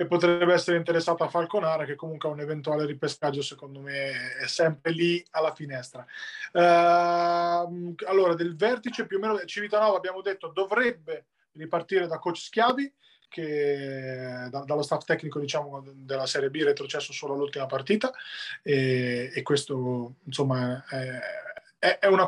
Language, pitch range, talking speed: Italian, 145-185 Hz, 145 wpm